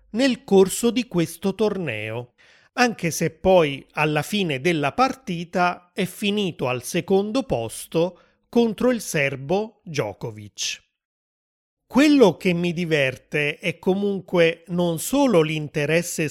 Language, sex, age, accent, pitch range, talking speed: Italian, male, 30-49, native, 150-190 Hz, 110 wpm